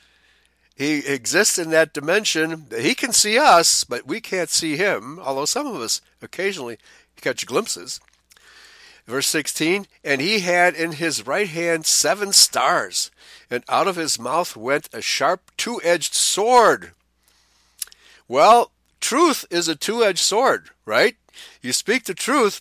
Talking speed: 140 wpm